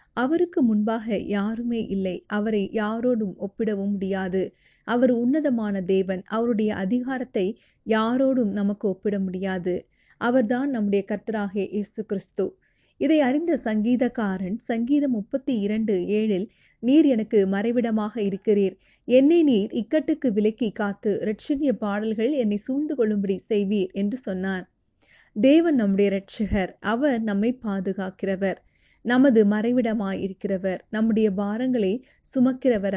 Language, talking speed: Tamil, 100 wpm